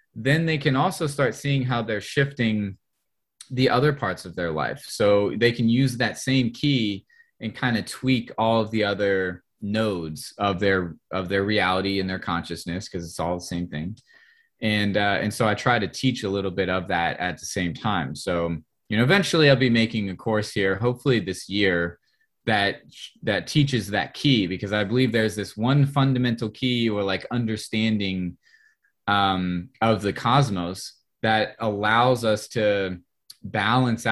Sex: male